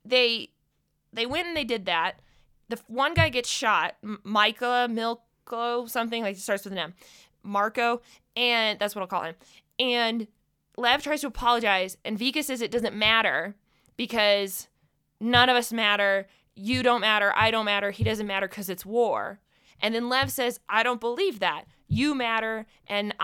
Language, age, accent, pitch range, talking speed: English, 20-39, American, 205-260 Hz, 175 wpm